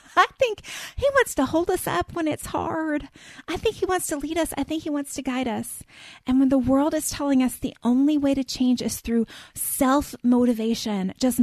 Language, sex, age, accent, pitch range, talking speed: English, female, 30-49, American, 215-270 Hz, 215 wpm